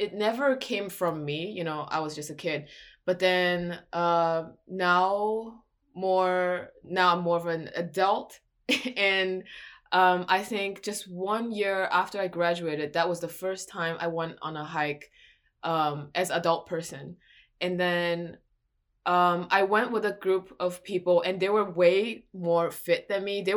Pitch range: 165-190 Hz